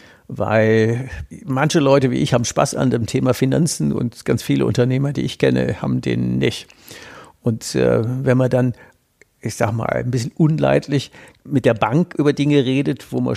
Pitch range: 115-140 Hz